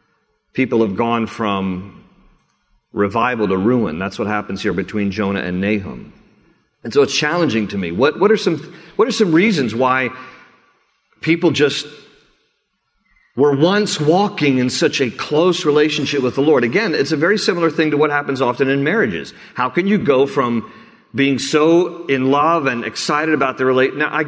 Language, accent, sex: English, American, male